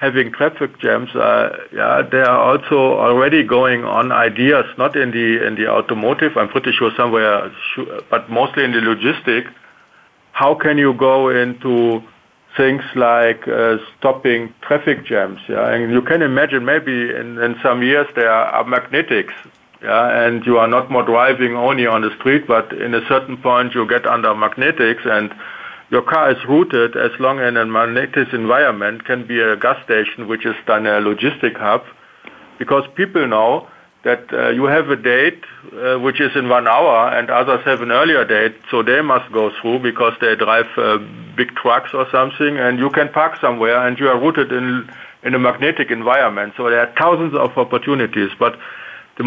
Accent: German